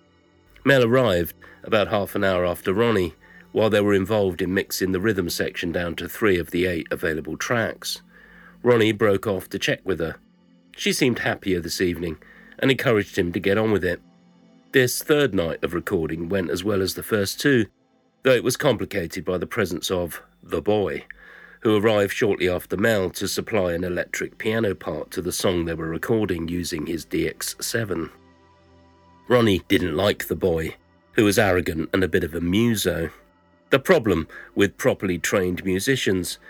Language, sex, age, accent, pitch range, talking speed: English, male, 50-69, British, 90-110 Hz, 175 wpm